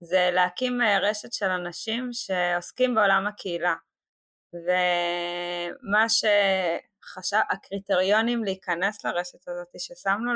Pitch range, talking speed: 180-210 Hz, 80 wpm